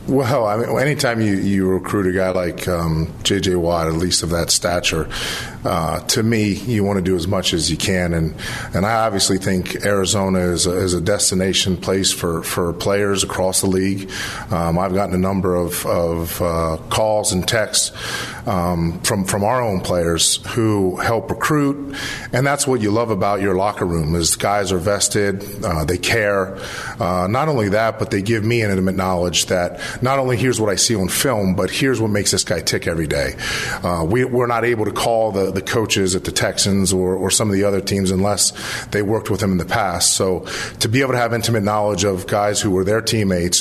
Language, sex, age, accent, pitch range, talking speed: English, male, 40-59, American, 90-110 Hz, 215 wpm